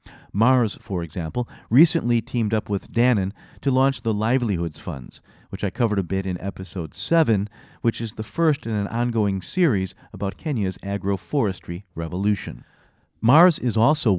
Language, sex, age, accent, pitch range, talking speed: English, male, 50-69, American, 95-130 Hz, 150 wpm